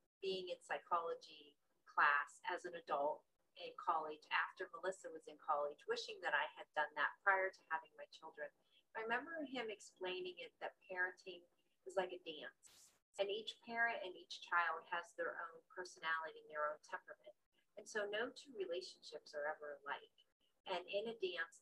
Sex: female